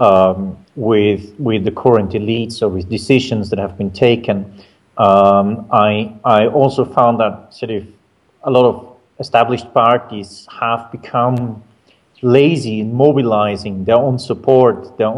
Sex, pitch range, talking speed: male, 105-130 Hz, 140 wpm